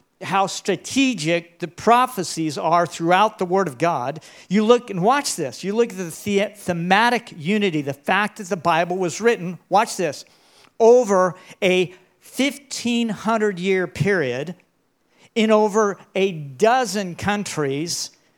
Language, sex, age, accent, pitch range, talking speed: English, male, 50-69, American, 175-225 Hz, 125 wpm